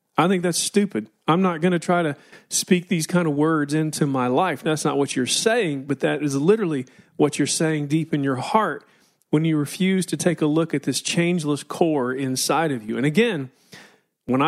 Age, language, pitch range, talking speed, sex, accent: 40-59, English, 140-180 Hz, 210 wpm, male, American